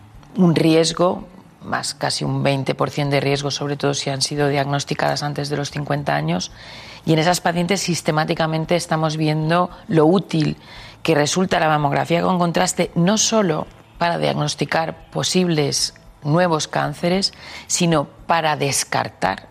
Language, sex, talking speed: Spanish, female, 135 wpm